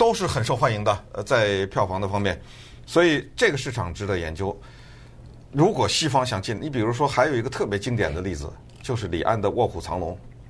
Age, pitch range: 50-69, 100-135 Hz